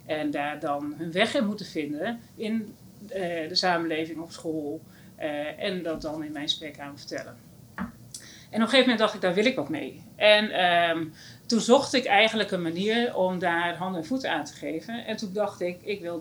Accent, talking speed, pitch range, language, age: Dutch, 210 wpm, 160-215 Hz, Dutch, 40-59